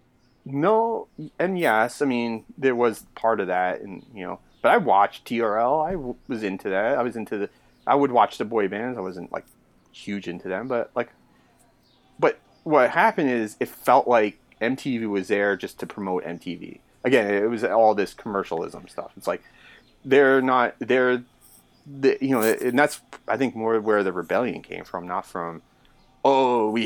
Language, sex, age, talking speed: English, male, 30-49, 190 wpm